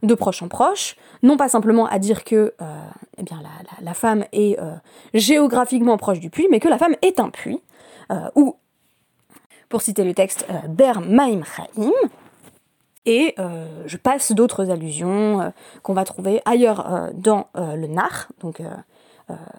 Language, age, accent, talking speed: French, 20-39, French, 170 wpm